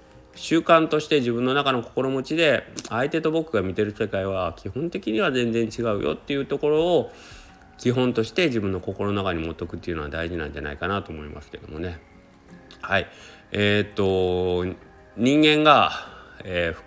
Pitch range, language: 85-115 Hz, Japanese